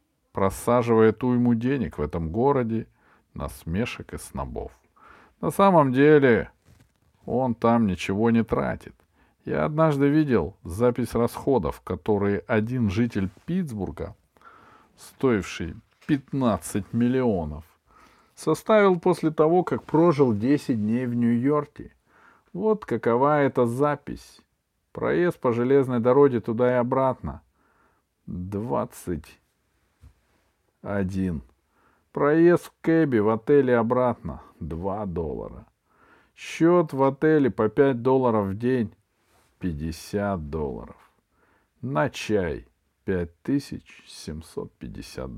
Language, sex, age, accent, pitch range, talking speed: Russian, male, 50-69, native, 100-140 Hz, 95 wpm